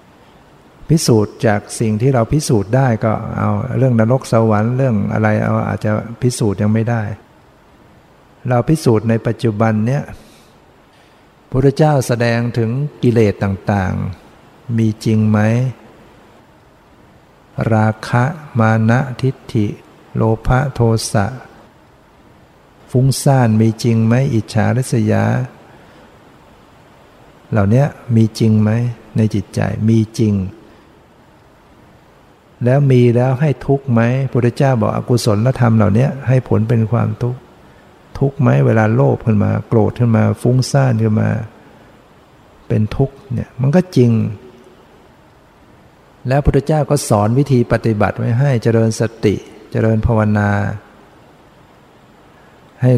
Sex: male